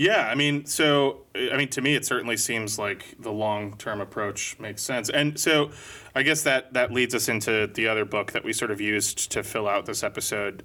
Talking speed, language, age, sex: 220 wpm, English, 30-49, male